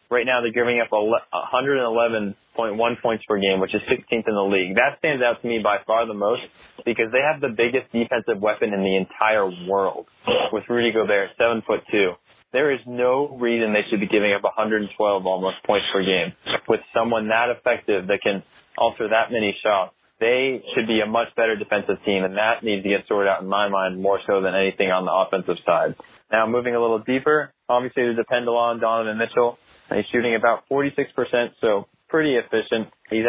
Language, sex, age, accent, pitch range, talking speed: English, male, 20-39, American, 100-120 Hz, 200 wpm